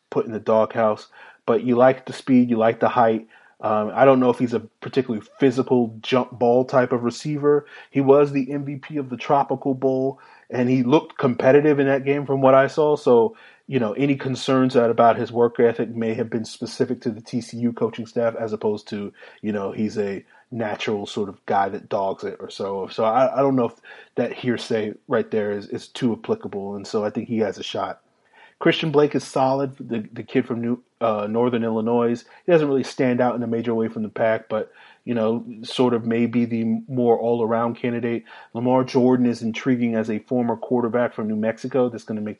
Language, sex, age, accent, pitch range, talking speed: English, male, 30-49, American, 115-130 Hz, 215 wpm